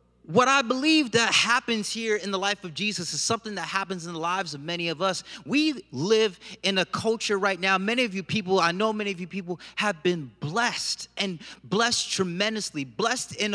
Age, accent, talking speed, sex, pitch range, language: 30-49, American, 210 wpm, male, 180-225 Hz, English